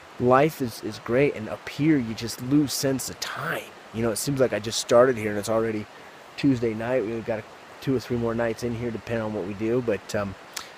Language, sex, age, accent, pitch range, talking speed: English, male, 20-39, American, 110-130 Hz, 245 wpm